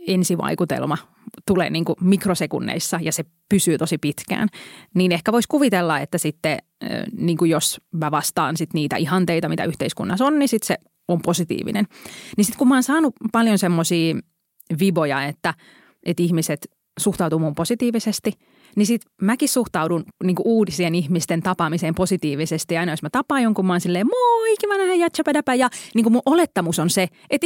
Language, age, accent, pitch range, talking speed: Finnish, 30-49, native, 165-225 Hz, 160 wpm